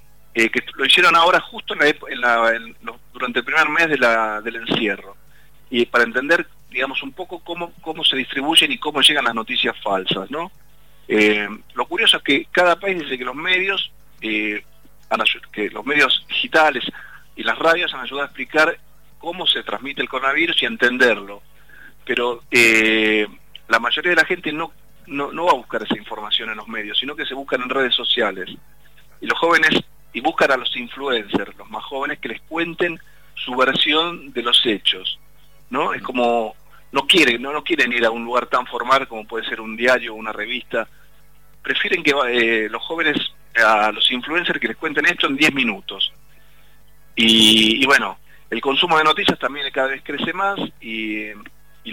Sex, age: male, 40-59